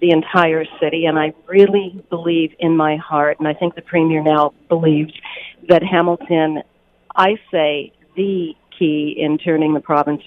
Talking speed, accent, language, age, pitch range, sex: 160 wpm, American, English, 50-69, 145-175 Hz, female